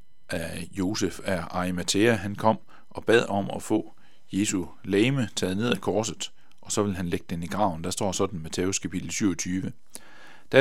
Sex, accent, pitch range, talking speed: male, native, 90-115 Hz, 185 wpm